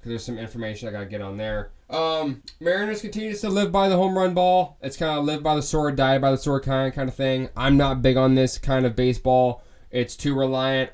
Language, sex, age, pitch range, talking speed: English, male, 20-39, 115-135 Hz, 240 wpm